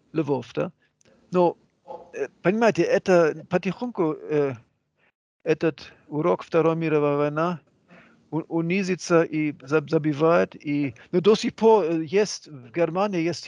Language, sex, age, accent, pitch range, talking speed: Russian, male, 50-69, German, 145-185 Hz, 105 wpm